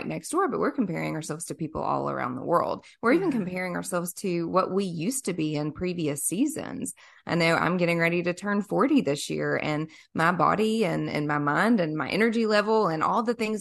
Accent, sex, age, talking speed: American, female, 20-39, 220 wpm